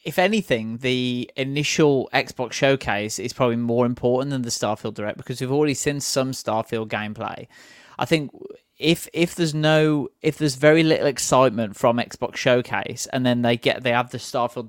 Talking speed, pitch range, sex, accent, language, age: 175 wpm, 115-140 Hz, male, British, English, 20-39